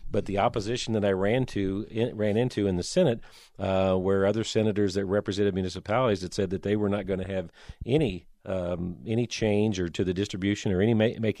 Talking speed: 205 wpm